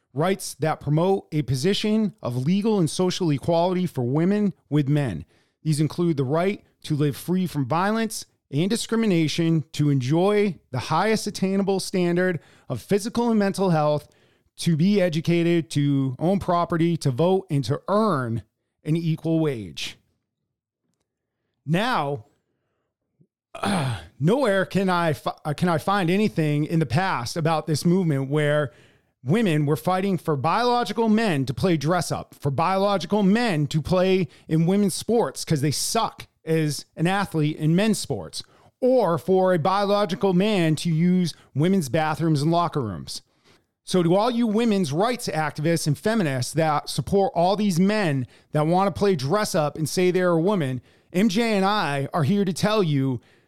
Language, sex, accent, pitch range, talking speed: English, male, American, 150-195 Hz, 155 wpm